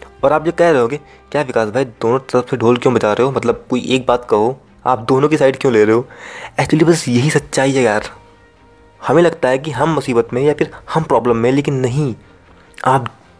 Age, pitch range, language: 20-39, 120-150 Hz, Hindi